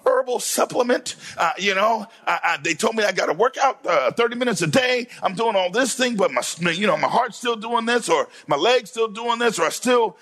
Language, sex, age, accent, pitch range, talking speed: English, male, 50-69, American, 210-255 Hz, 255 wpm